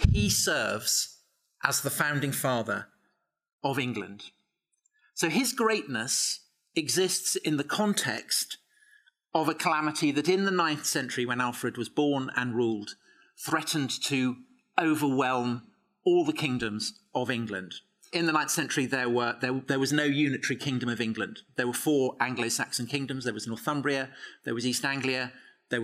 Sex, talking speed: male, 145 wpm